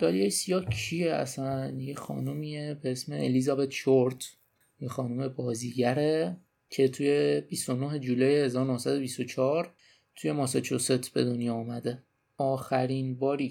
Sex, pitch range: male, 125-145 Hz